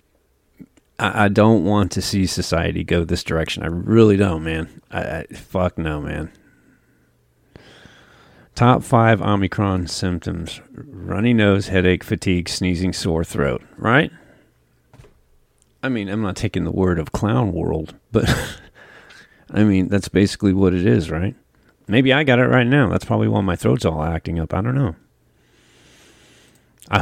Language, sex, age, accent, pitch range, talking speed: English, male, 40-59, American, 85-110 Hz, 145 wpm